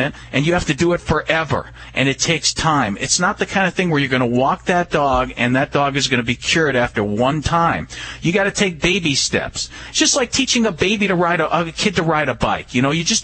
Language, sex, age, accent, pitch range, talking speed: English, male, 50-69, American, 140-205 Hz, 270 wpm